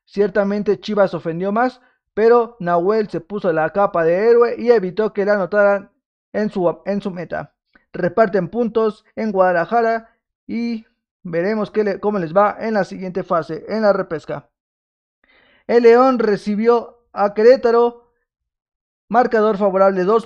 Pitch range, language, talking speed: 185-225 Hz, Spanish, 140 wpm